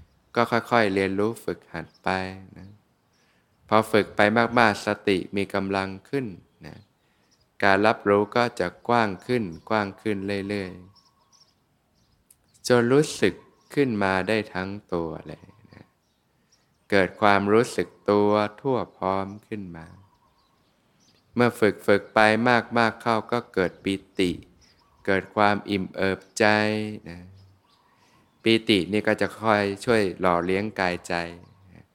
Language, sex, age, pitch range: Thai, male, 20-39, 95-110 Hz